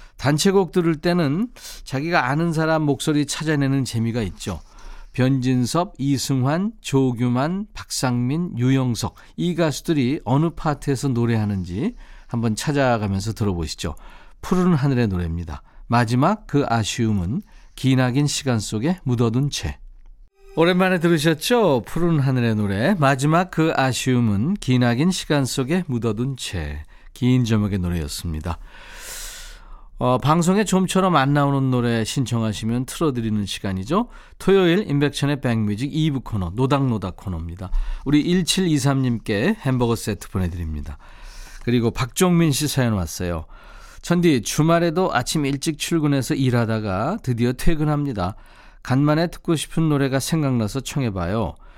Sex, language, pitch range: male, Korean, 115-165 Hz